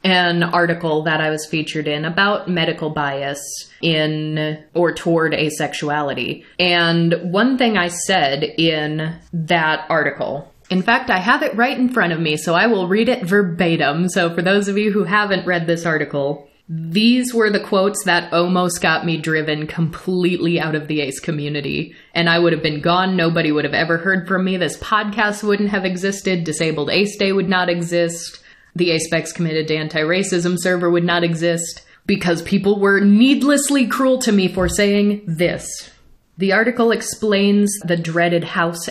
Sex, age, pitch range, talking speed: female, 30-49, 160-195 Hz, 175 wpm